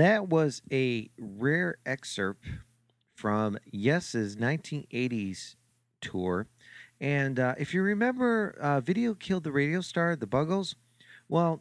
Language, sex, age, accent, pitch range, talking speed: English, male, 40-59, American, 100-135 Hz, 120 wpm